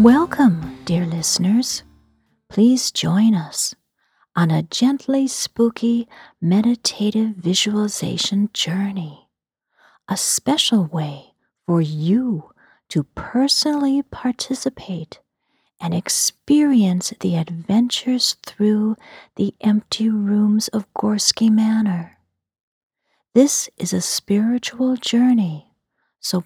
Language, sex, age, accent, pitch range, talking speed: English, female, 40-59, American, 175-230 Hz, 85 wpm